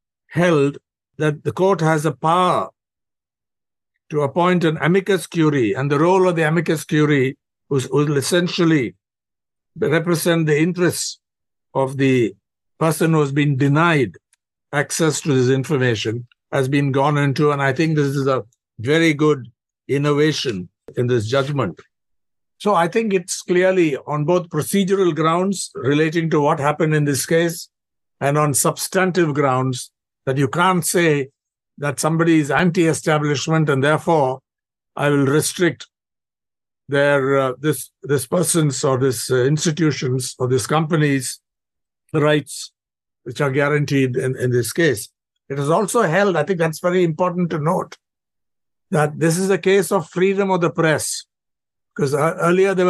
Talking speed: 145 wpm